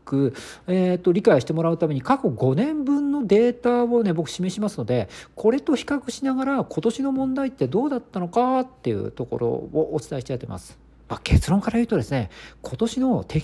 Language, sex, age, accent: Japanese, male, 50-69, native